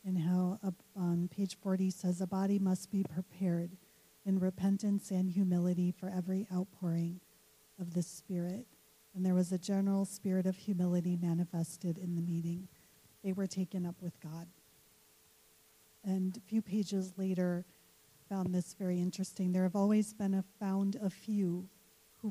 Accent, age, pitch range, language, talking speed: American, 40-59, 180-195 Hz, English, 155 wpm